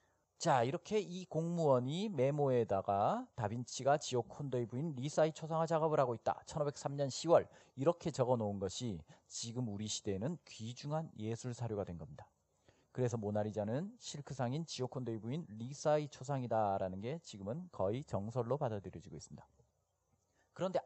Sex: male